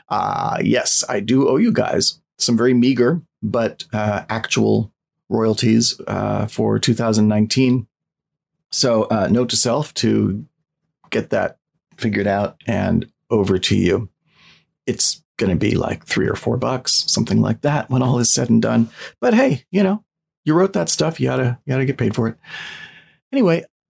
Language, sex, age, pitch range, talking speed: English, male, 40-59, 115-160 Hz, 175 wpm